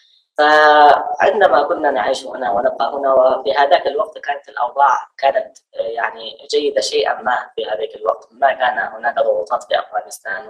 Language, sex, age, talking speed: Arabic, female, 20-39, 145 wpm